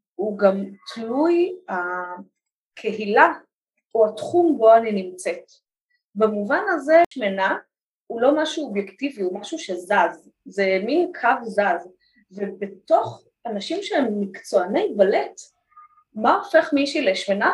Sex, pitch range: female, 205-330 Hz